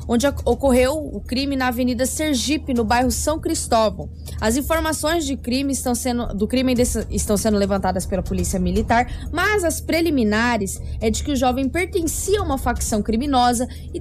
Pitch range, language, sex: 225-290 Hz, Portuguese, female